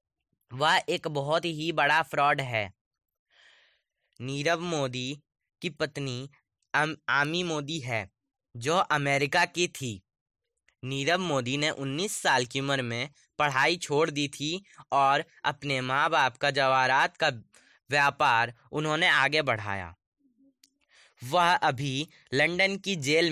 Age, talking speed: 20-39, 120 wpm